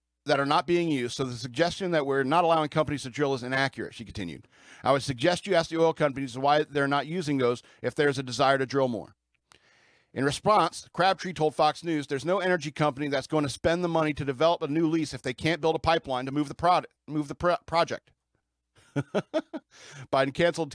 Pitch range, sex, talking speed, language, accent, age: 125-165 Hz, male, 220 wpm, English, American, 50-69